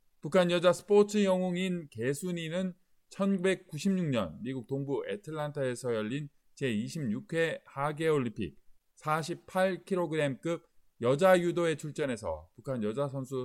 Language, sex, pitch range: Korean, male, 135-175 Hz